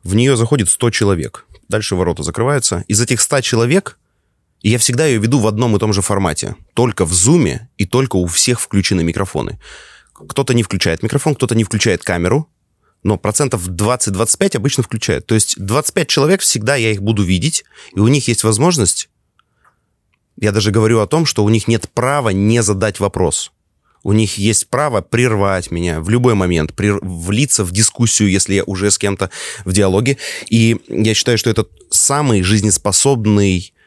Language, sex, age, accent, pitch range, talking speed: Russian, male, 30-49, native, 95-120 Hz, 170 wpm